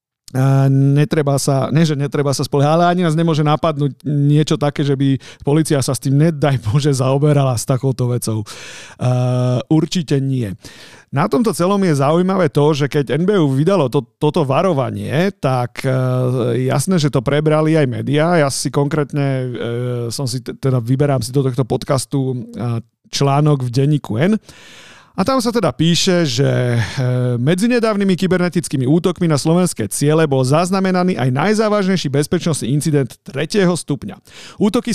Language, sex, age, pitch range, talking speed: Slovak, male, 40-59, 135-170 Hz, 150 wpm